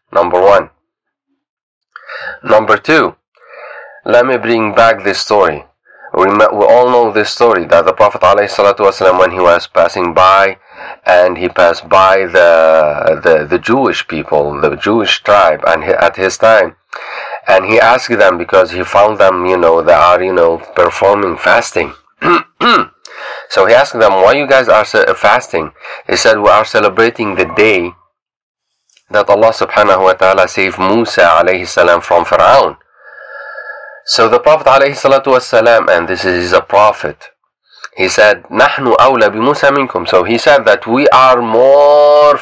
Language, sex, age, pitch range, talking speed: English, male, 30-49, 95-145 Hz, 135 wpm